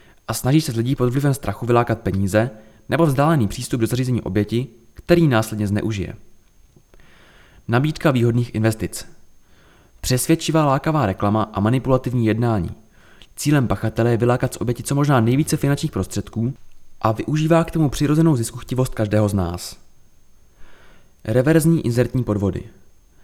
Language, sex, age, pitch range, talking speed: Czech, male, 20-39, 105-135 Hz, 130 wpm